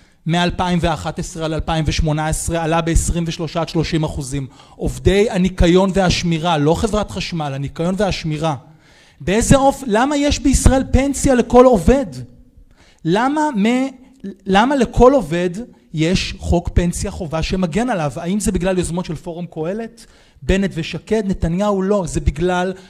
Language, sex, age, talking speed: Hebrew, male, 30-49, 130 wpm